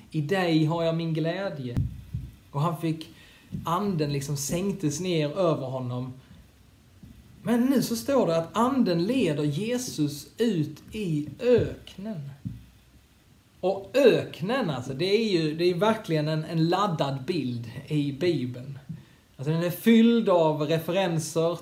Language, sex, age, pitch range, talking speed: Swedish, male, 30-49, 145-195 Hz, 130 wpm